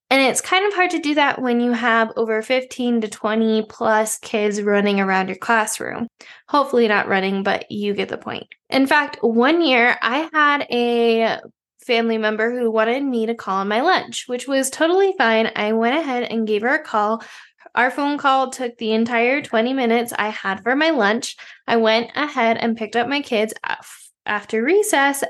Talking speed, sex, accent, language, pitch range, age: 190 wpm, female, American, English, 215-265 Hz, 10-29